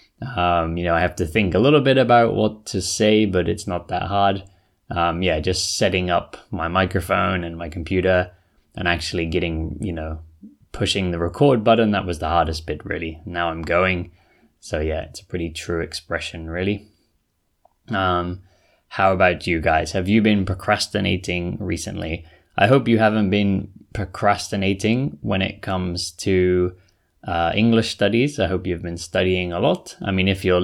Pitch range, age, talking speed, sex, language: 85-100 Hz, 20-39, 175 wpm, male, English